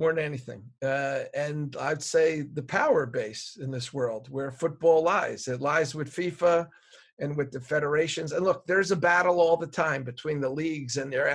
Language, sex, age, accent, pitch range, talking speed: English, male, 50-69, American, 135-165 Hz, 185 wpm